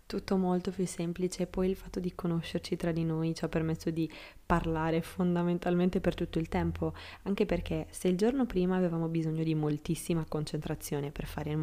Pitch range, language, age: 155-180 Hz, Italian, 20-39